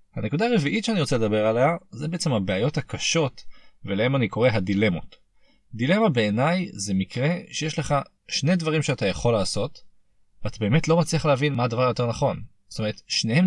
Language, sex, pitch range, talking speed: Hebrew, male, 105-140 Hz, 165 wpm